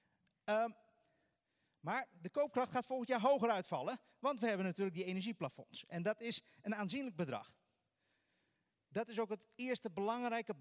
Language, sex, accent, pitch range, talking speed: English, male, Dutch, 150-215 Hz, 155 wpm